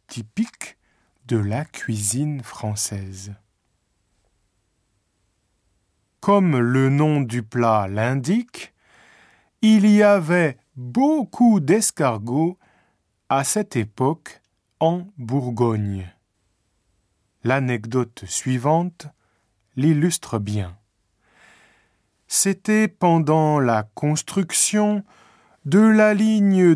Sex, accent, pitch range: male, French, 105-175 Hz